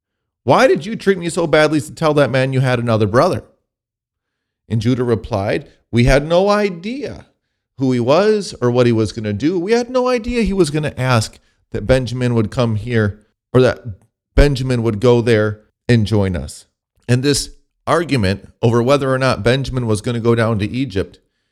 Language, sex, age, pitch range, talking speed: English, male, 40-59, 105-125 Hz, 195 wpm